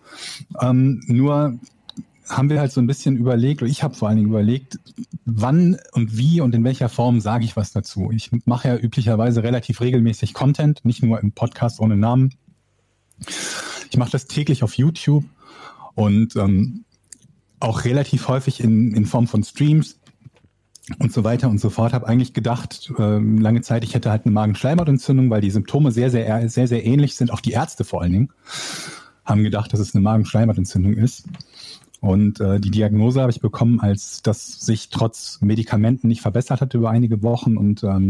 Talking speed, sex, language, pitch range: 185 wpm, male, German, 110-130 Hz